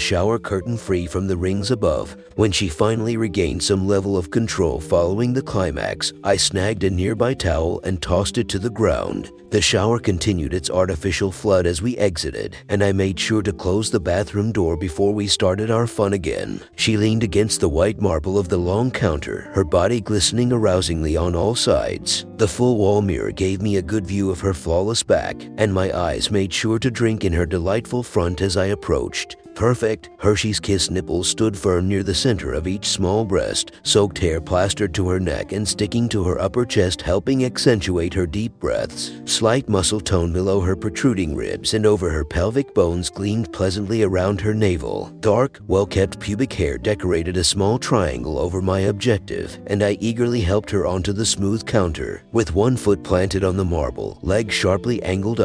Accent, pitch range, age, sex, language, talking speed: American, 95-110 Hz, 50-69, male, English, 190 wpm